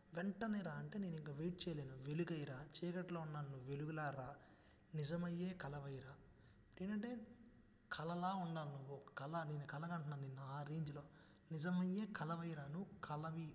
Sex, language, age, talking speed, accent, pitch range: male, Telugu, 20-39, 140 wpm, native, 145-185 Hz